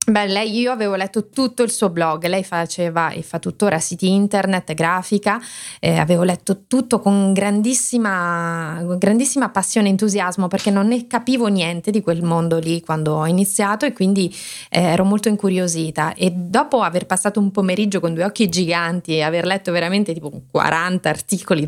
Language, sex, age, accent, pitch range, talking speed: Italian, female, 20-39, native, 180-225 Hz, 170 wpm